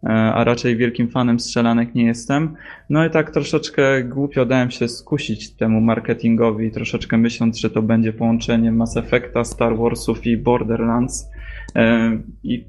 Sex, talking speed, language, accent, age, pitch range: male, 140 wpm, Polish, native, 20-39, 115-125 Hz